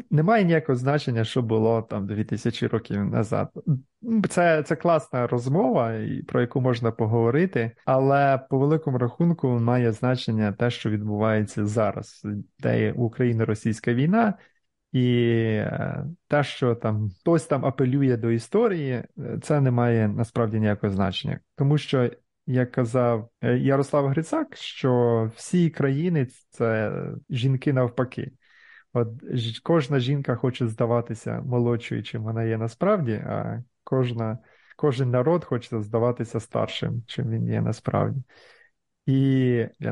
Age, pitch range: 20-39, 115-140 Hz